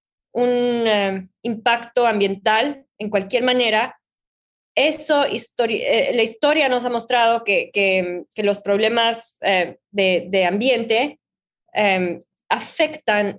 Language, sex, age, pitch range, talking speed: Spanish, female, 20-39, 195-235 Hz, 115 wpm